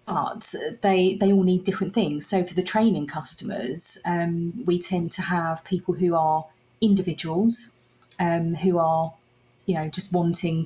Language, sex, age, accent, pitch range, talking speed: English, female, 30-49, British, 160-190 Hz, 160 wpm